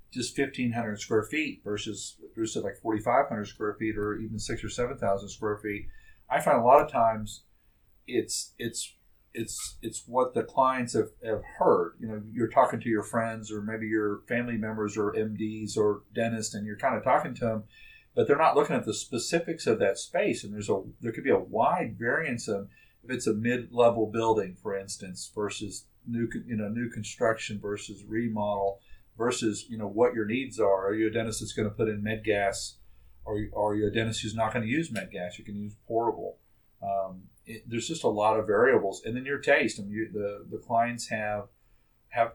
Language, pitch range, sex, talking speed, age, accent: English, 100-115 Hz, male, 205 wpm, 50-69, American